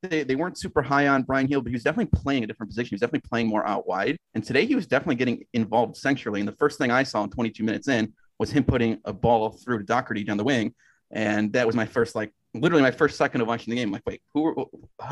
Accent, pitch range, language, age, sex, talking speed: American, 110-135 Hz, English, 30-49, male, 280 wpm